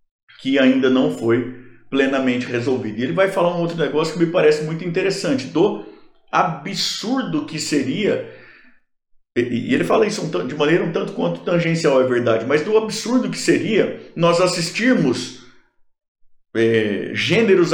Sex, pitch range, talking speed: male, 130-175 Hz, 140 wpm